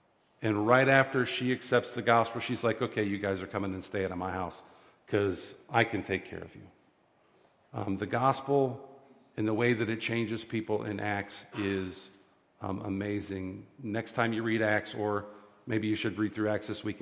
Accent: American